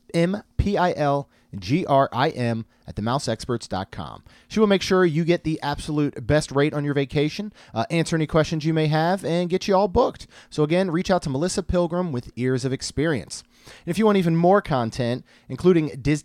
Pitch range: 135-180 Hz